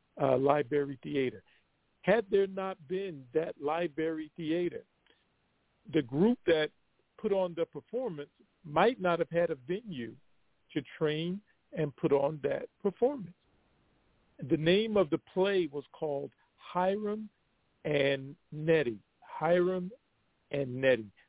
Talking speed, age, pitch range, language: 120 wpm, 50-69, 155-190 Hz, English